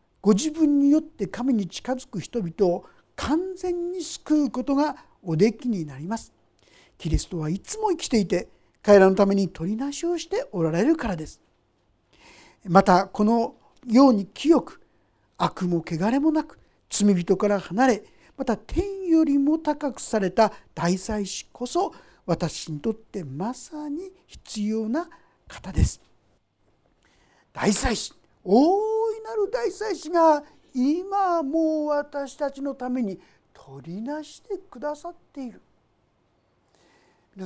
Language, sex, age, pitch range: Japanese, male, 50-69, 195-300 Hz